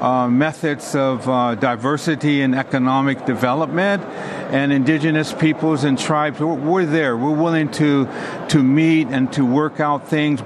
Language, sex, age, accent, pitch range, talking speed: English, male, 60-79, American, 130-155 Hz, 155 wpm